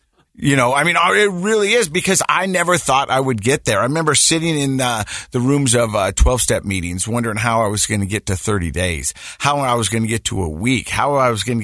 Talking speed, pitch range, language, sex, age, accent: 260 wpm, 90-125 Hz, English, male, 50-69, American